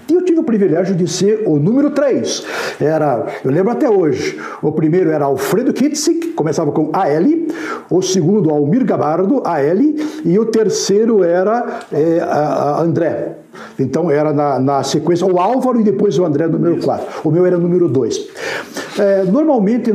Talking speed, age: 160 wpm, 60-79